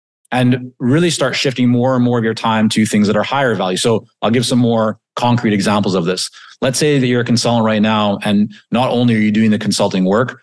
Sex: male